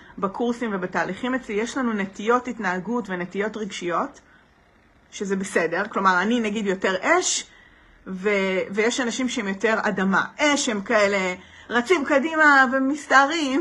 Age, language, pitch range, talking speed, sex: 40-59, Hebrew, 200-260 Hz, 125 wpm, female